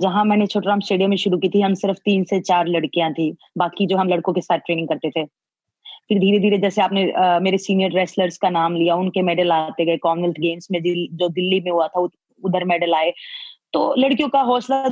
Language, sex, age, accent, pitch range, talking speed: Hindi, female, 20-39, native, 180-205 Hz, 225 wpm